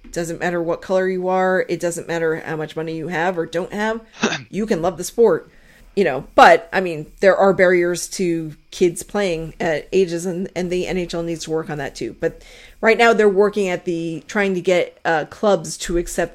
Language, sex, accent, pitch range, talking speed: English, female, American, 165-195 Hz, 215 wpm